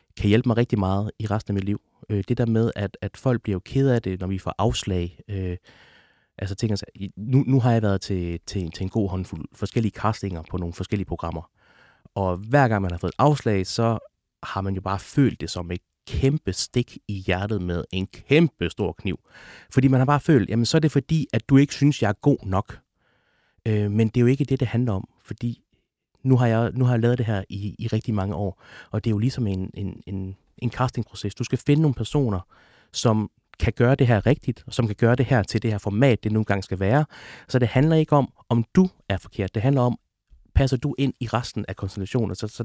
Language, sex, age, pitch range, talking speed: Danish, male, 30-49, 95-125 Hz, 230 wpm